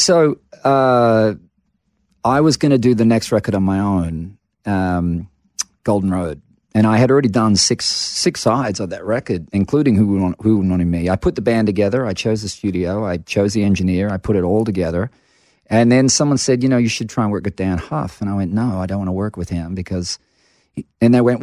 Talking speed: 225 wpm